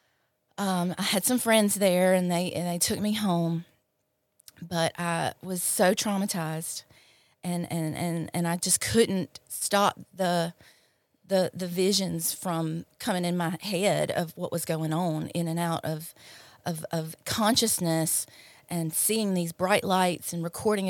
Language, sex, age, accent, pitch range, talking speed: English, female, 30-49, American, 160-185 Hz, 155 wpm